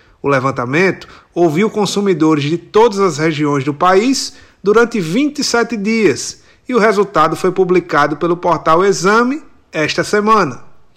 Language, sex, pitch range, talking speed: Portuguese, male, 170-215 Hz, 125 wpm